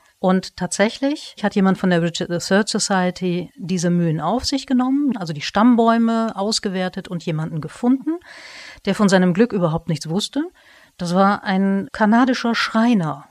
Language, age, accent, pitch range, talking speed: German, 40-59, German, 165-215 Hz, 150 wpm